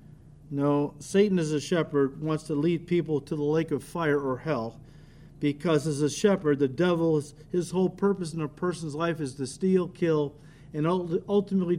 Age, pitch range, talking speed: 50-69, 150-200 Hz, 180 wpm